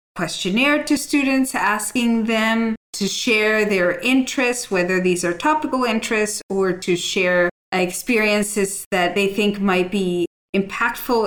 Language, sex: English, female